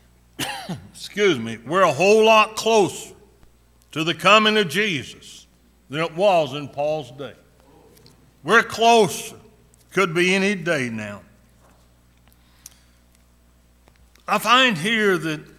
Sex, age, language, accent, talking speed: male, 60-79, English, American, 110 wpm